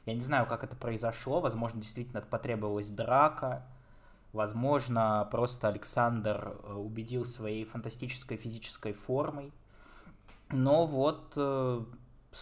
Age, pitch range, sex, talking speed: 20-39, 115-140 Hz, male, 105 wpm